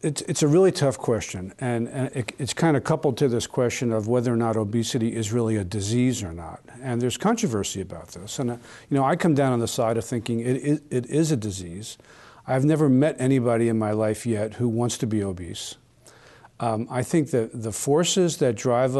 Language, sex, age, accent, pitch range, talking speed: English, male, 50-69, American, 110-130 Hz, 205 wpm